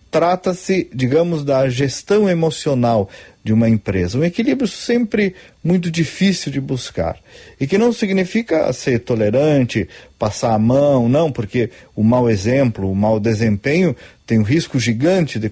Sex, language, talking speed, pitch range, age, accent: male, Portuguese, 145 wpm, 115-170 Hz, 40-59, Brazilian